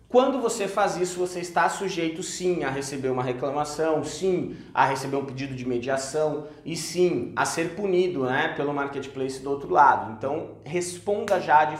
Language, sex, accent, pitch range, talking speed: Portuguese, male, Brazilian, 135-175 Hz, 175 wpm